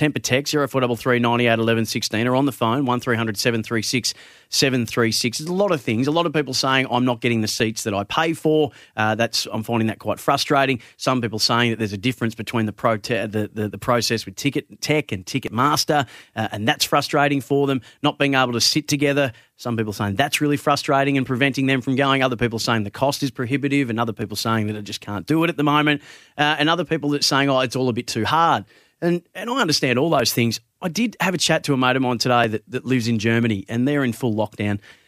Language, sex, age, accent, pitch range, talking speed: English, male, 30-49, Australian, 115-140 Hz, 235 wpm